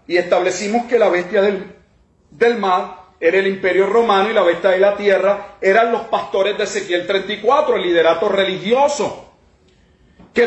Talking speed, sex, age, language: 160 wpm, male, 40-59, Spanish